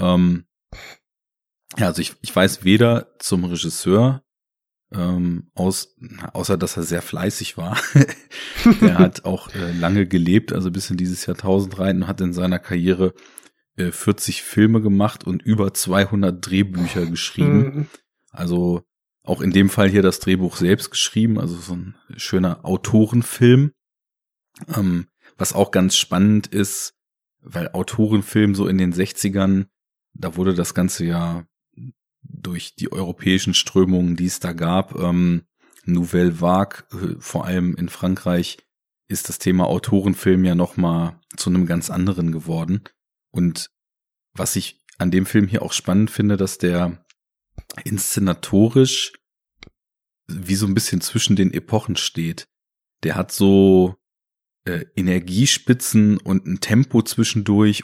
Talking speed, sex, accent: 135 wpm, male, German